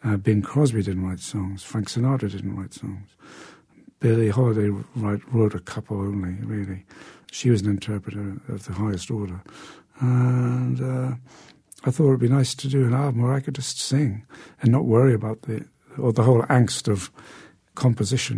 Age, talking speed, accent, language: 60-79, 180 wpm, British, English